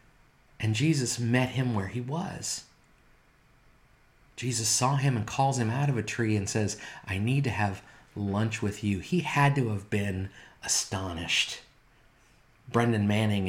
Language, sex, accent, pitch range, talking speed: English, male, American, 105-140 Hz, 150 wpm